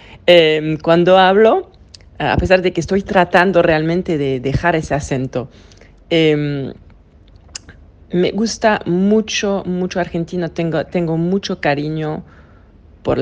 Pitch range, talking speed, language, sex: 130-180 Hz, 115 wpm, Spanish, female